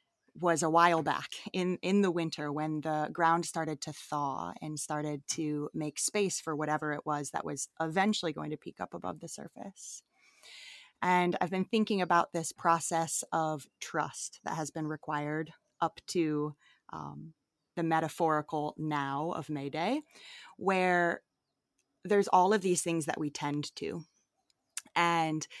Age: 20-39